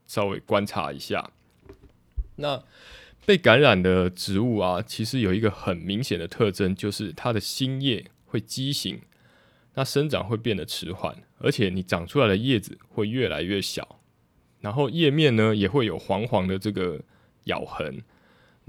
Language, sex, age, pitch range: Chinese, male, 20-39, 100-130 Hz